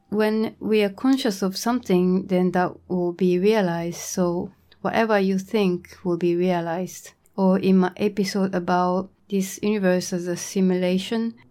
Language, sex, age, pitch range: Japanese, female, 30-49, 180-200 Hz